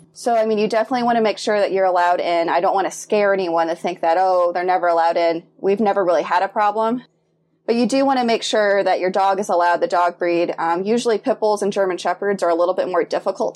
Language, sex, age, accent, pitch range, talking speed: English, female, 20-39, American, 180-225 Hz, 265 wpm